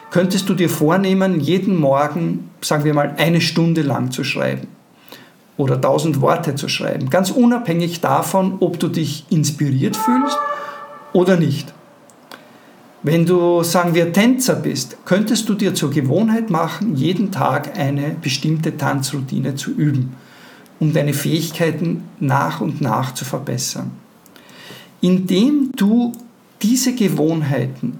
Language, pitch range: German, 150-190 Hz